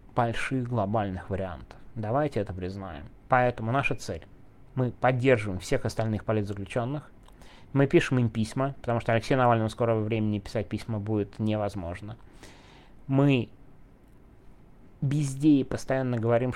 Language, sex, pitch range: Russian, male, 105-130 Hz